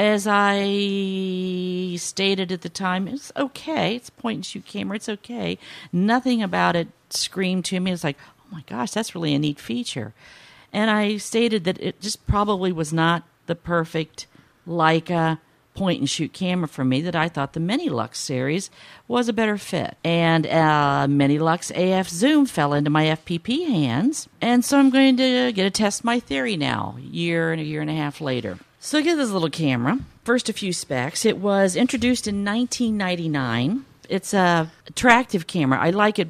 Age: 50-69